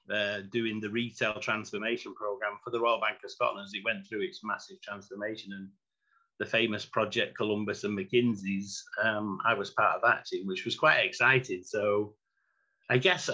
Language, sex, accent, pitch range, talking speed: English, male, British, 105-155 Hz, 180 wpm